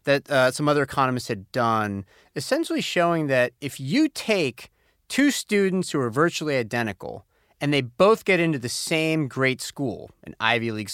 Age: 30-49